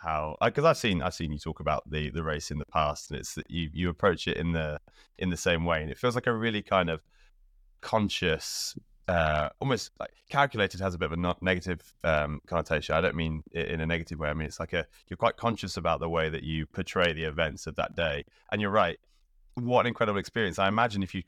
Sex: male